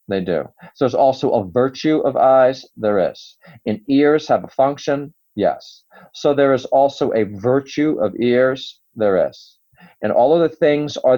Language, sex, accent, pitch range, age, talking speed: English, male, American, 115-140 Hz, 40-59, 175 wpm